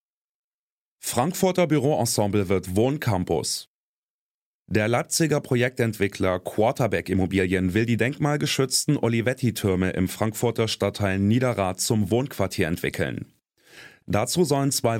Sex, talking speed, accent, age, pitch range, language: male, 90 wpm, German, 30-49, 100-125 Hz, German